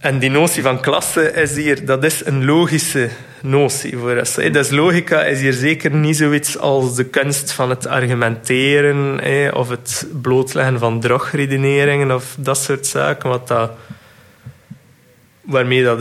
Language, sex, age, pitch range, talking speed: Dutch, male, 20-39, 130-145 Hz, 150 wpm